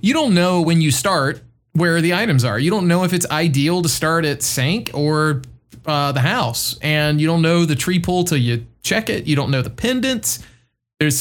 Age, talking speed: 20-39, 220 wpm